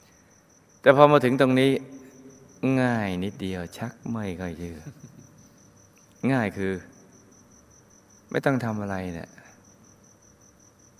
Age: 20-39